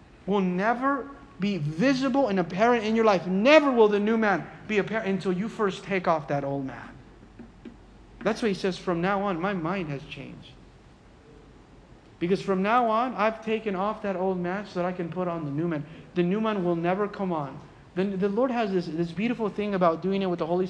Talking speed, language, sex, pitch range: 215 wpm, English, male, 165-205 Hz